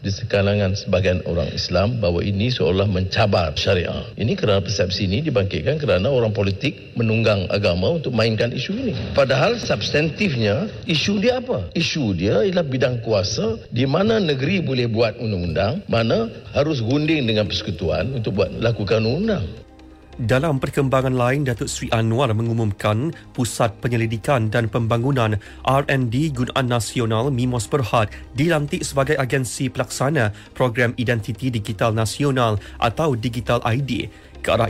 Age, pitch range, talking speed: 50-69, 110-140 Hz, 135 wpm